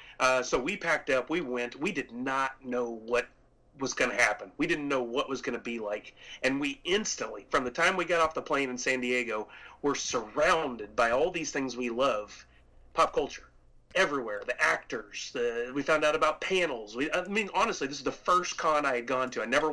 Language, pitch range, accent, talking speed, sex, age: English, 125-150 Hz, American, 220 wpm, male, 30-49